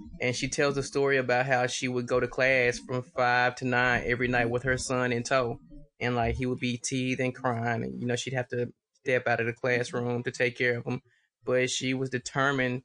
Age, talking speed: 20-39, 240 wpm